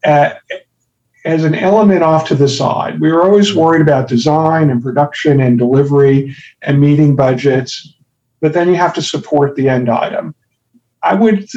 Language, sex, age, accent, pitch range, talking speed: English, male, 50-69, American, 130-160 Hz, 160 wpm